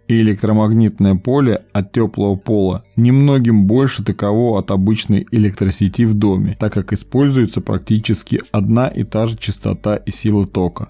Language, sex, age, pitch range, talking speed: Russian, male, 20-39, 100-115 Hz, 145 wpm